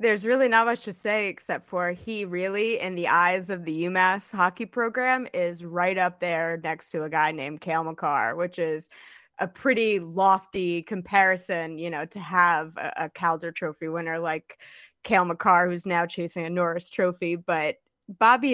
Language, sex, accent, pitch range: English, female, American, 170-195 Hz